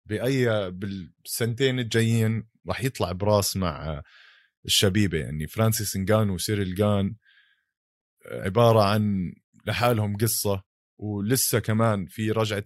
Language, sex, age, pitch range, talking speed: Arabic, male, 20-39, 95-115 Hz, 100 wpm